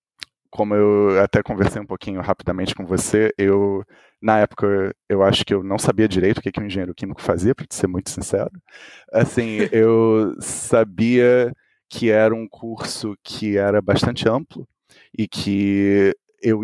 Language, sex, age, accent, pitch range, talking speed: Portuguese, male, 30-49, Brazilian, 95-110 Hz, 155 wpm